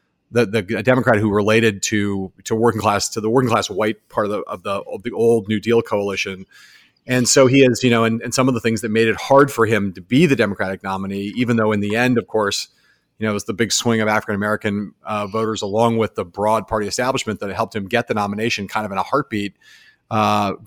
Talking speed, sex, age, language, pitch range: 250 wpm, male, 30-49, English, 105-120 Hz